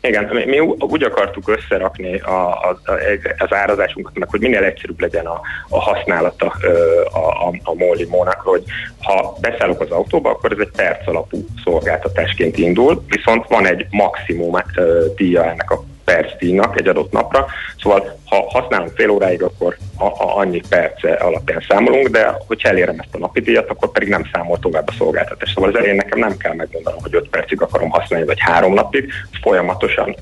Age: 30-49